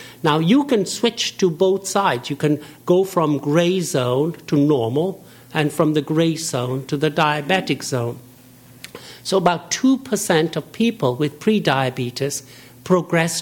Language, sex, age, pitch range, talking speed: English, male, 60-79, 130-165 Hz, 145 wpm